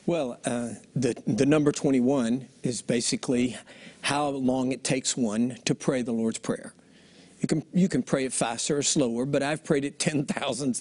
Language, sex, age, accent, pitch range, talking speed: English, male, 60-79, American, 135-195 Hz, 190 wpm